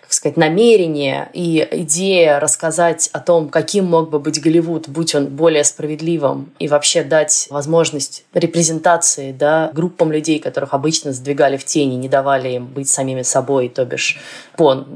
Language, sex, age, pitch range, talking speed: Russian, female, 20-39, 145-175 Hz, 155 wpm